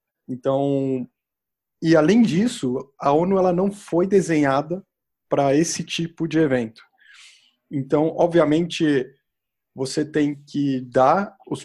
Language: Portuguese